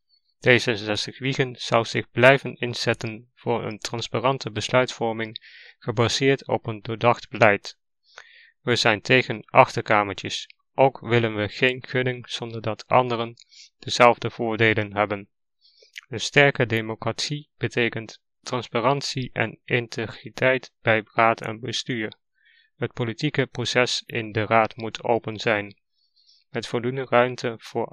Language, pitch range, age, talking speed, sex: Dutch, 110-130 Hz, 20-39, 120 wpm, male